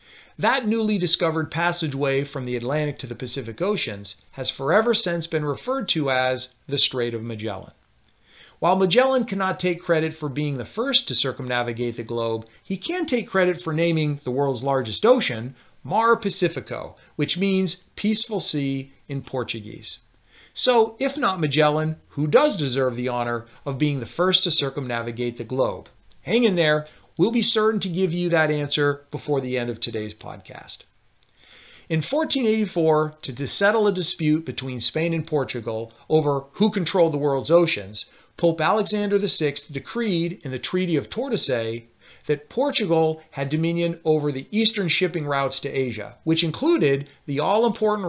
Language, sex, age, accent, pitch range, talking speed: English, male, 40-59, American, 130-185 Hz, 160 wpm